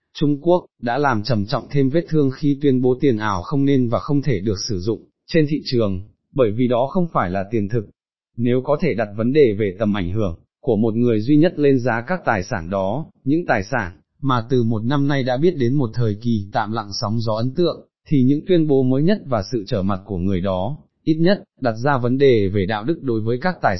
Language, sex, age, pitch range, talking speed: Vietnamese, male, 20-39, 110-140 Hz, 250 wpm